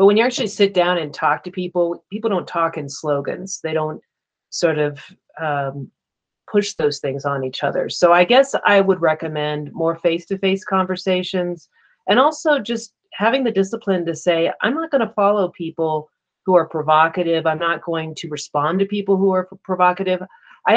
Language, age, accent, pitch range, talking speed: English, 40-59, American, 160-200 Hz, 180 wpm